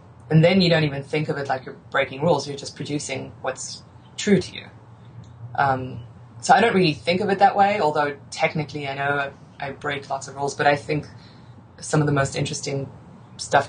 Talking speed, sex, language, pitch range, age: 210 wpm, female, English, 125-155 Hz, 20-39